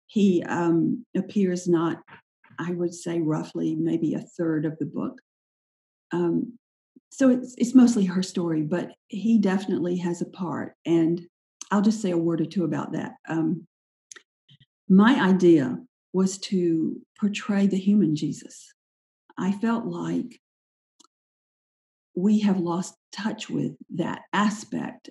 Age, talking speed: 50-69, 135 wpm